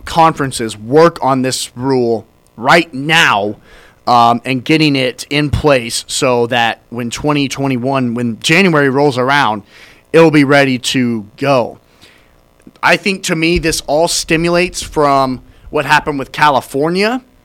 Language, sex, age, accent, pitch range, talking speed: English, male, 30-49, American, 120-155 Hz, 135 wpm